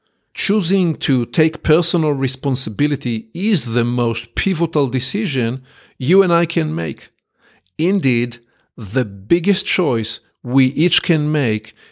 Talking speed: 115 wpm